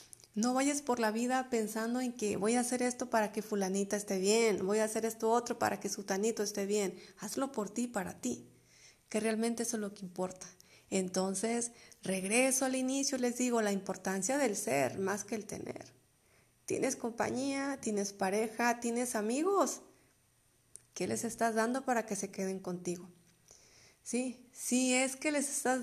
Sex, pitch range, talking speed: female, 200-240 Hz, 175 wpm